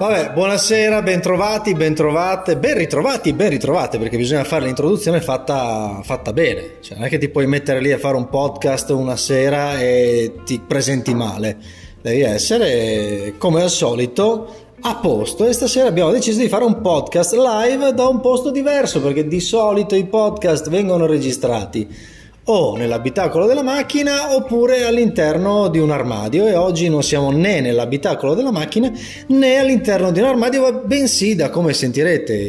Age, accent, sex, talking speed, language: 20-39, native, male, 155 wpm, Italian